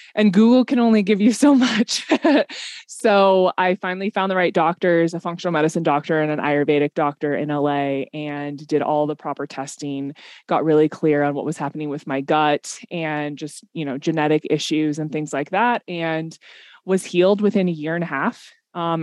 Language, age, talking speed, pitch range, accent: English, 20-39, 190 wpm, 160-195 Hz, American